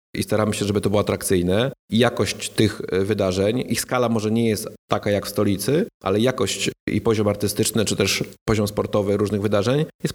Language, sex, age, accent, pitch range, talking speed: Polish, male, 30-49, native, 95-115 Hz, 190 wpm